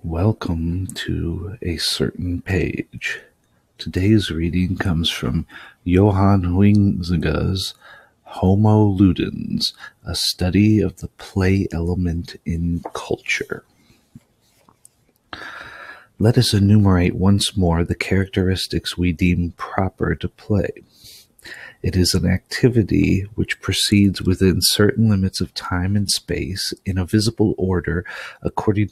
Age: 40-59